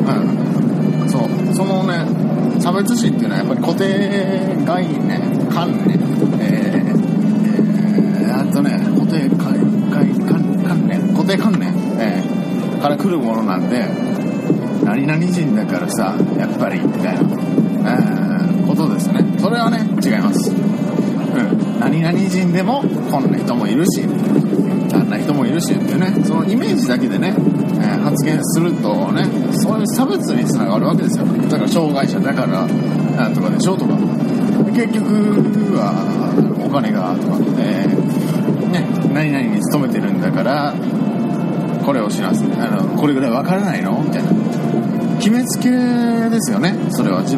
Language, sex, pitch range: Japanese, male, 195-220 Hz